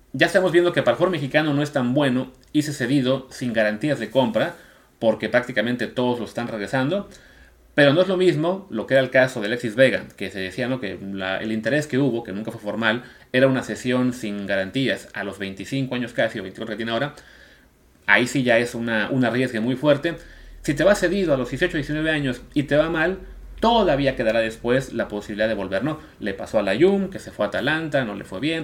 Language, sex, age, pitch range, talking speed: Spanish, male, 30-49, 110-145 Hz, 230 wpm